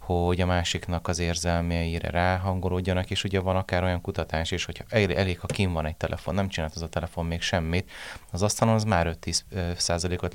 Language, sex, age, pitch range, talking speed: Hungarian, male, 30-49, 85-95 Hz, 185 wpm